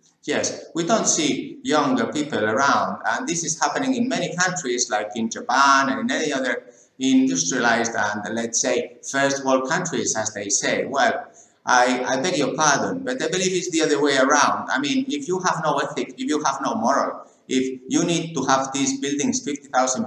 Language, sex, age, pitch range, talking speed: English, male, 50-69, 125-170 Hz, 195 wpm